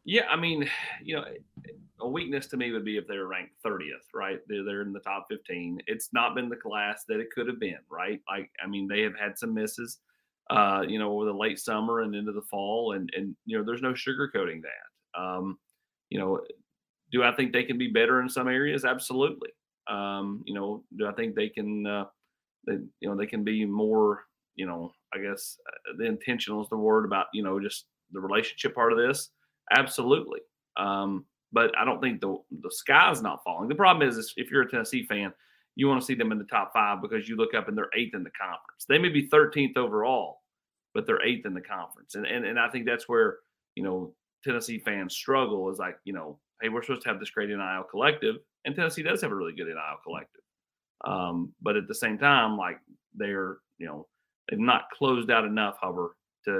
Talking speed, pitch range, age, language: 225 wpm, 100-140 Hz, 30-49, English